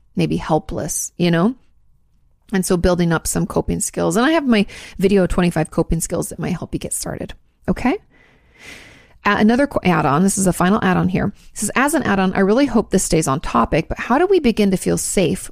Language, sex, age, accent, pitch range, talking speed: English, female, 30-49, American, 170-205 Hz, 210 wpm